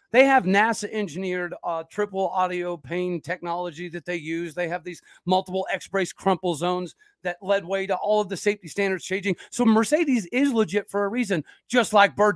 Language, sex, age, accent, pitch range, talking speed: English, male, 40-59, American, 180-230 Hz, 180 wpm